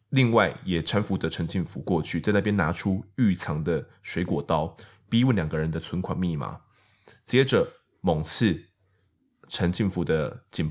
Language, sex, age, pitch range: Chinese, male, 20-39, 85-110 Hz